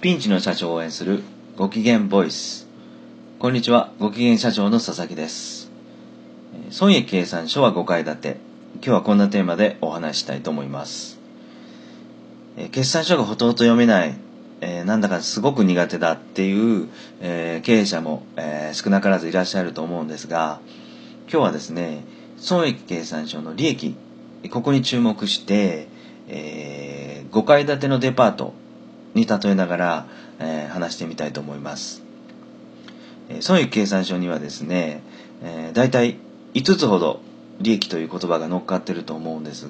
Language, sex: Japanese, male